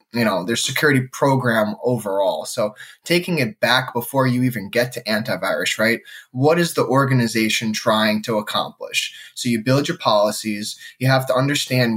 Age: 10-29